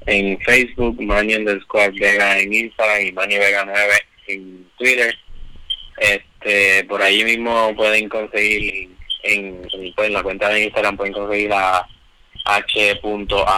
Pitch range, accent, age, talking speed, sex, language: 95-105 Hz, Spanish, 20-39, 150 wpm, male, Spanish